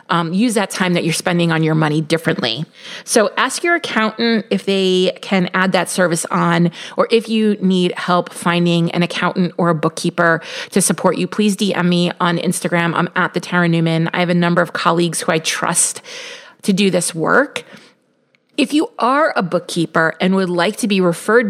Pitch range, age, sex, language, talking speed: 160-190 Hz, 30-49, female, English, 195 wpm